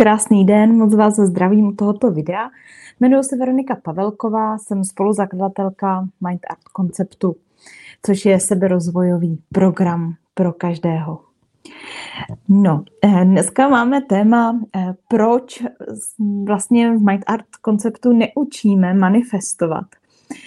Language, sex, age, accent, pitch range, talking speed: Czech, female, 20-39, native, 190-240 Hz, 105 wpm